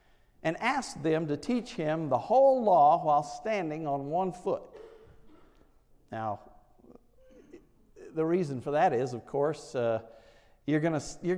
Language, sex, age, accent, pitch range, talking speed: English, male, 50-69, American, 120-180 Hz, 125 wpm